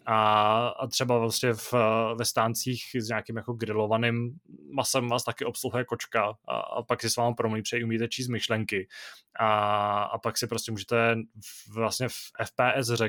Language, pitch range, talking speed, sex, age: Czech, 115-135 Hz, 175 wpm, male, 20-39